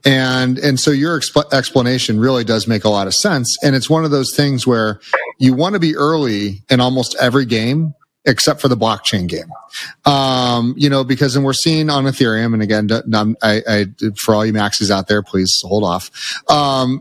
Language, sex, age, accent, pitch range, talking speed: English, male, 30-49, American, 110-140 Hz, 200 wpm